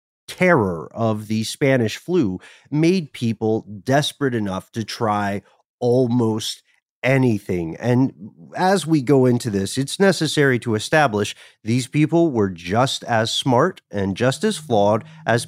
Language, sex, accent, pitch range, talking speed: English, male, American, 105-150 Hz, 130 wpm